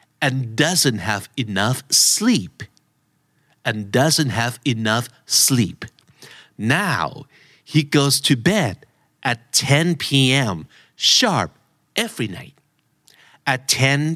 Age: 50-69